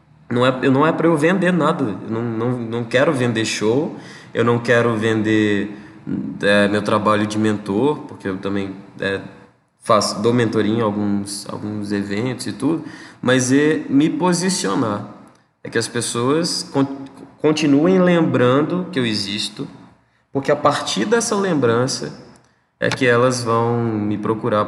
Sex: male